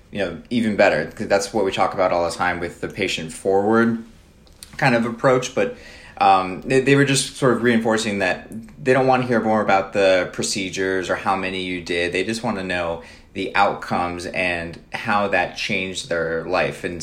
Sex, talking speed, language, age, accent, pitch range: male, 205 wpm, English, 30-49, American, 90-110 Hz